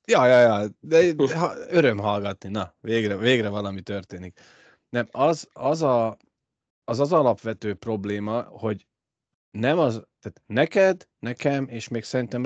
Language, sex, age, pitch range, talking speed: Hungarian, male, 30-49, 100-130 Hz, 145 wpm